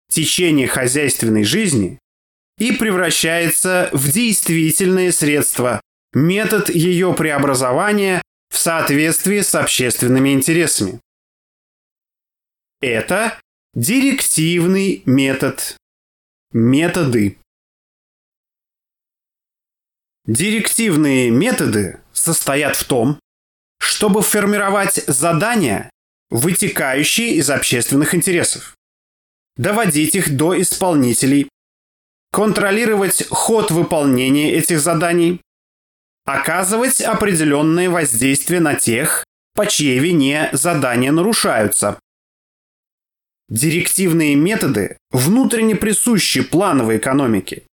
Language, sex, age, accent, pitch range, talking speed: Russian, male, 30-49, native, 135-190 Hz, 70 wpm